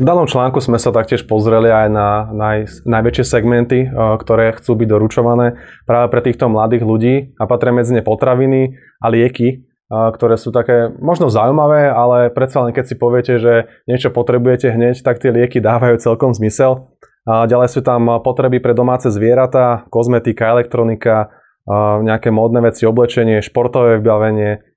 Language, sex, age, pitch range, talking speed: Slovak, male, 20-39, 115-130 Hz, 155 wpm